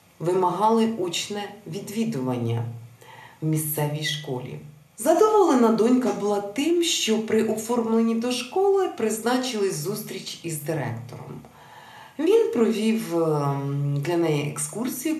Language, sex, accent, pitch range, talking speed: Ukrainian, female, native, 150-225 Hz, 95 wpm